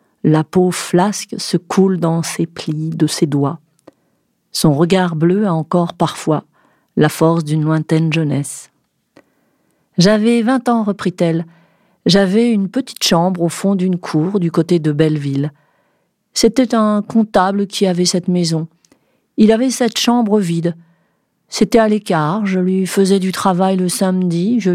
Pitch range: 165-215 Hz